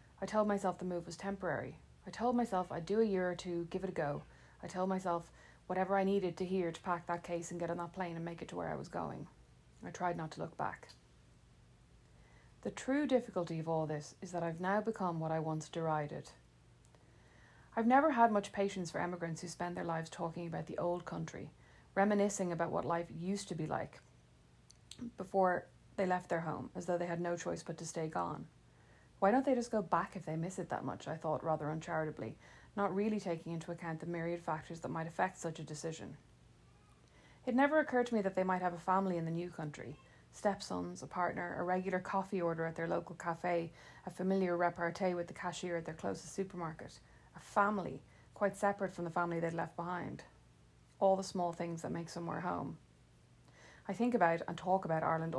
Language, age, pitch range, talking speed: English, 30-49, 160-190 Hz, 210 wpm